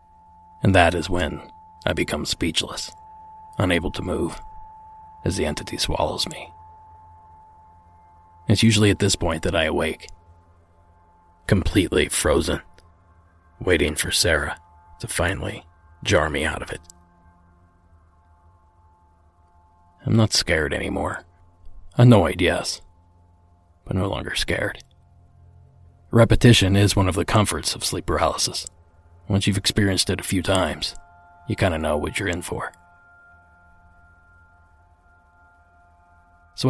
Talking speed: 115 wpm